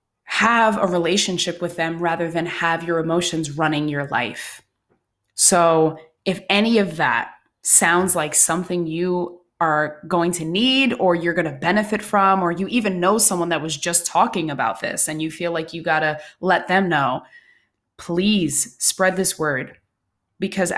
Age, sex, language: 20-39, female, English